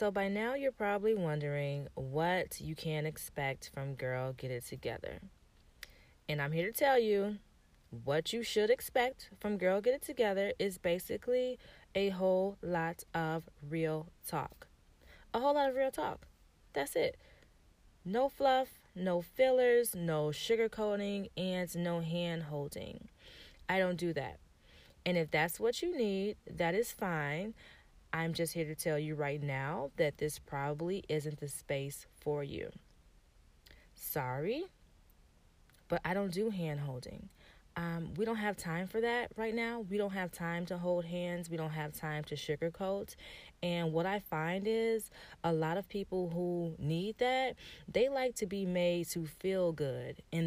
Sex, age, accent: female, 20-39, American